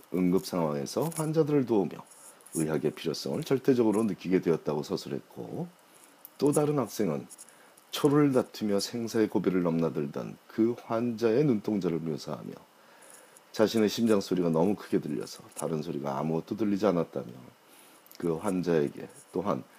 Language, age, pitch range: Korean, 40-59, 75-110 Hz